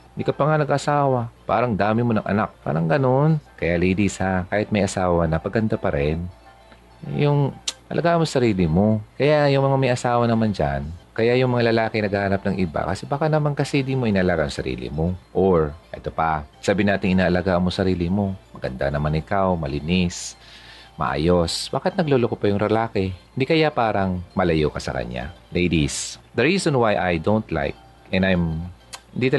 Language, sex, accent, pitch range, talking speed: Filipino, male, native, 80-120 Hz, 180 wpm